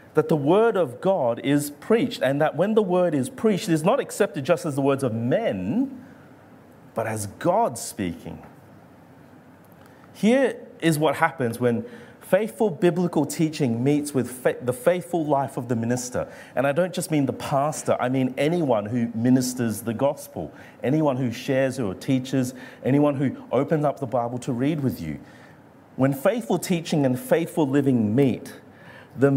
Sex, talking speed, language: male, 165 wpm, English